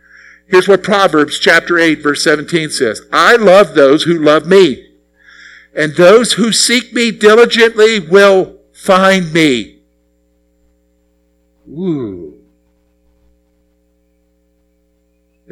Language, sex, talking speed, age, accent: English, male, 95 wpm, 50-69, American